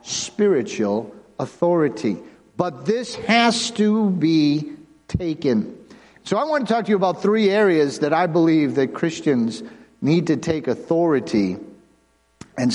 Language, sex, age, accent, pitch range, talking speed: English, male, 50-69, American, 150-195 Hz, 130 wpm